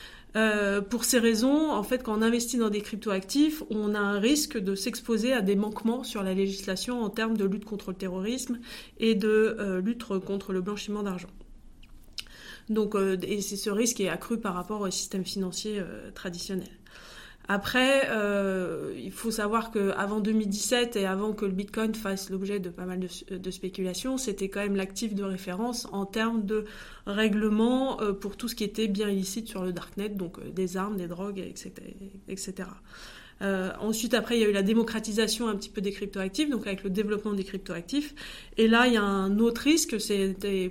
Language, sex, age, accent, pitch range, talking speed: French, female, 20-39, French, 195-225 Hz, 190 wpm